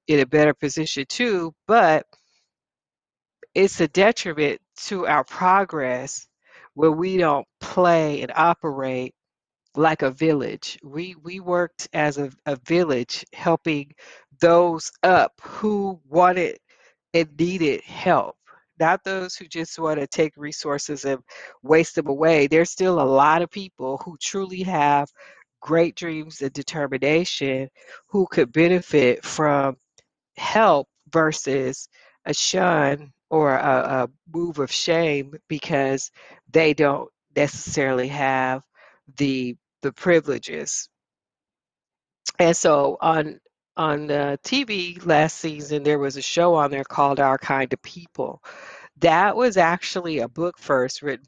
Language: English